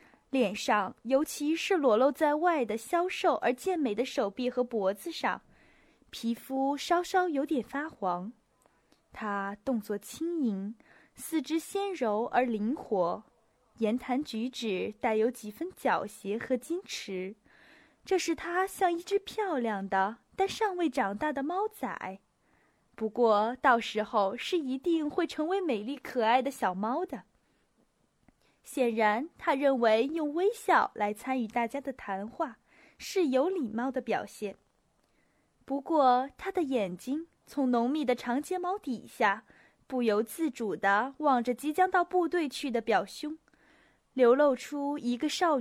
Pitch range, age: 220-320 Hz, 20-39